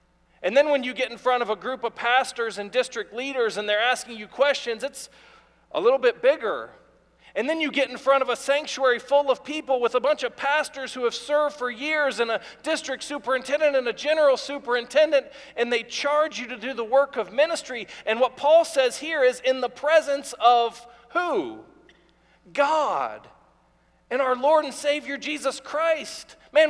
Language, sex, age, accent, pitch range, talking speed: English, male, 40-59, American, 245-295 Hz, 190 wpm